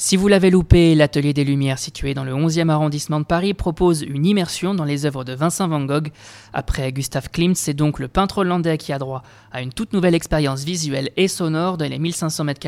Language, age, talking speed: French, 20-39, 220 wpm